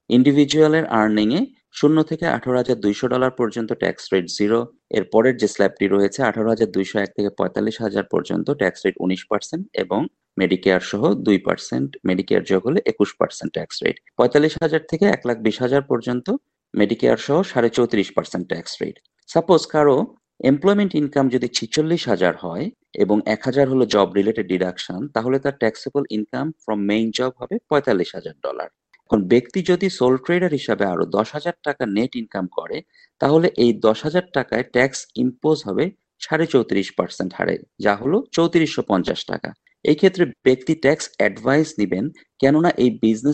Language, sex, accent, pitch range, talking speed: Bengali, male, native, 110-155 Hz, 80 wpm